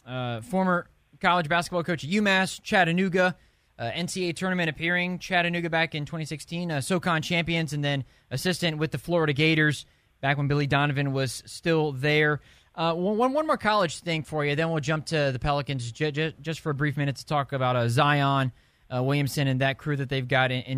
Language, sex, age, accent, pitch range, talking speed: English, male, 20-39, American, 145-180 Hz, 200 wpm